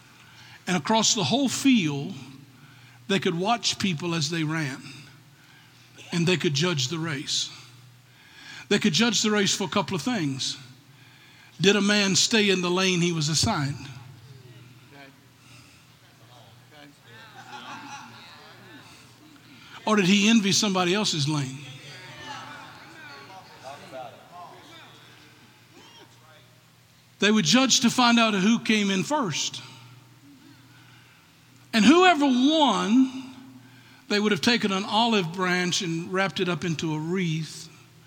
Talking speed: 115 wpm